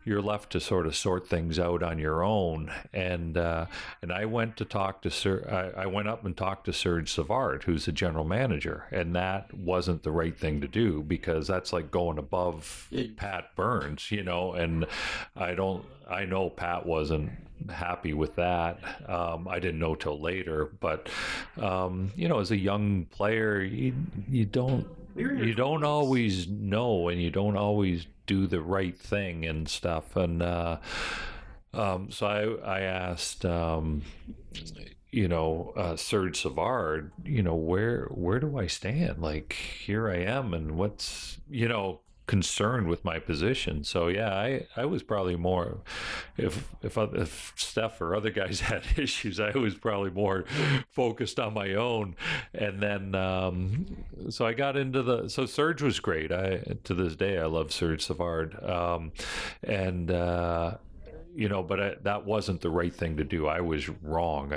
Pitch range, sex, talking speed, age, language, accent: 85-105 Hz, male, 170 wpm, 50-69, English, American